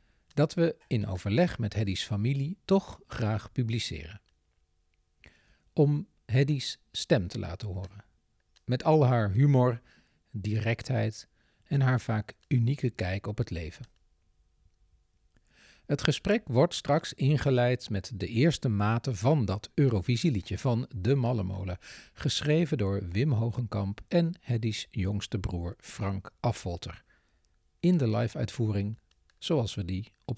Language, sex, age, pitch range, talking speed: Dutch, male, 50-69, 95-135 Hz, 120 wpm